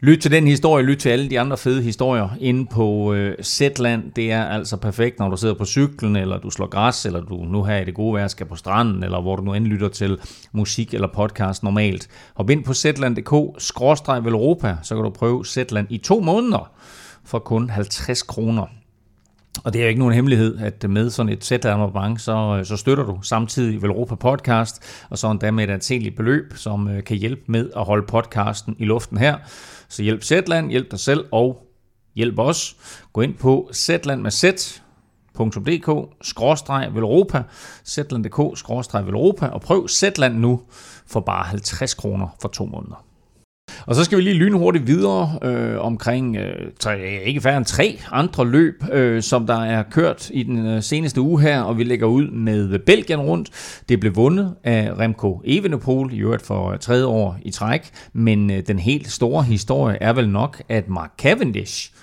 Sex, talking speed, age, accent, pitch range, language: male, 180 wpm, 30-49, native, 105-135 Hz, Danish